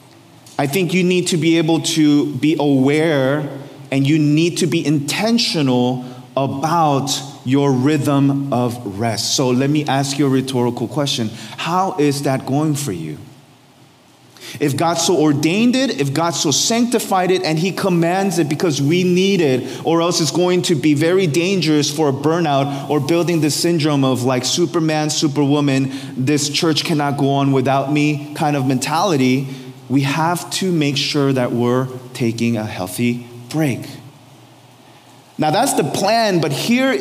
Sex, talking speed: male, 160 wpm